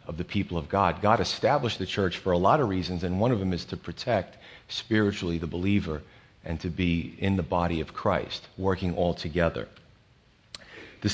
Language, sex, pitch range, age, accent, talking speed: English, male, 85-110 Hz, 40-59, American, 195 wpm